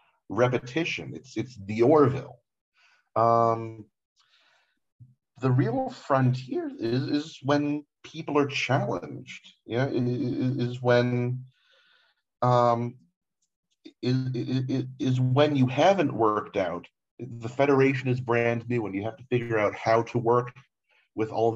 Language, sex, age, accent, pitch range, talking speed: English, male, 40-59, American, 105-130 Hz, 130 wpm